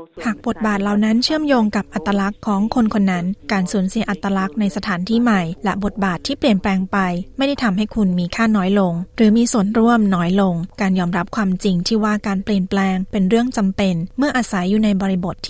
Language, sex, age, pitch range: Thai, female, 20-39, 190-225 Hz